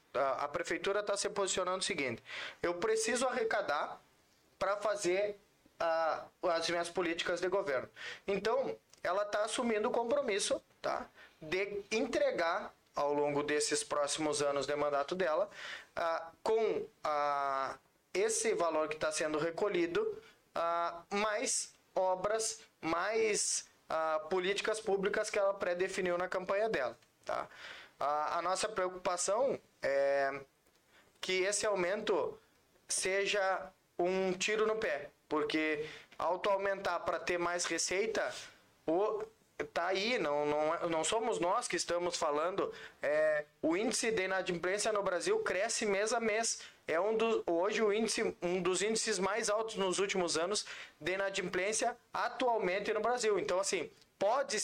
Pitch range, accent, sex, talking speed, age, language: 170-225 Hz, Brazilian, male, 130 wpm, 20-39, Portuguese